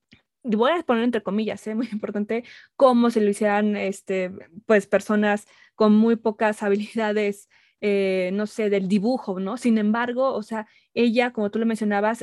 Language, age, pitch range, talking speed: Spanish, 20-39, 205-235 Hz, 165 wpm